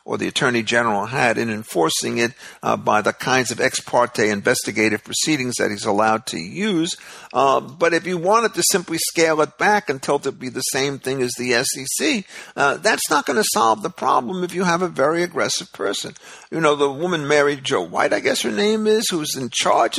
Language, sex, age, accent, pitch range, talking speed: English, male, 50-69, American, 130-175 Hz, 215 wpm